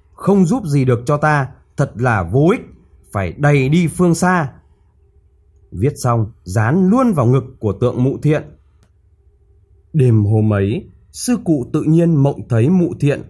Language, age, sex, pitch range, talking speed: Vietnamese, 20-39, male, 95-155 Hz, 160 wpm